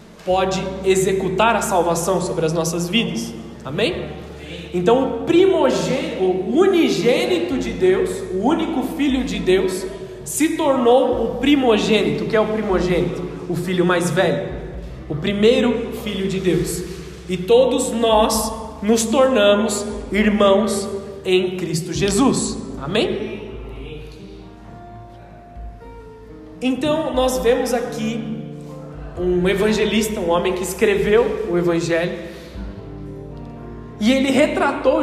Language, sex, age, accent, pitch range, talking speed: Portuguese, male, 20-39, Brazilian, 175-230 Hz, 110 wpm